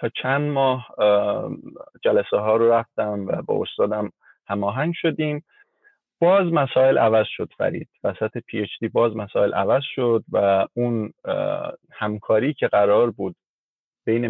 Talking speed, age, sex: 135 wpm, 30-49, male